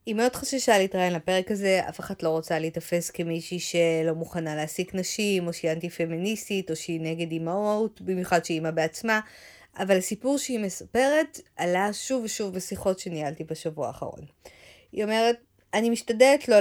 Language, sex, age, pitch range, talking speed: Hebrew, female, 20-39, 175-225 Hz, 160 wpm